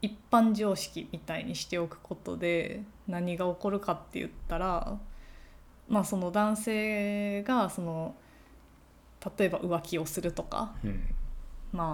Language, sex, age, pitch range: Japanese, female, 20-39, 165-220 Hz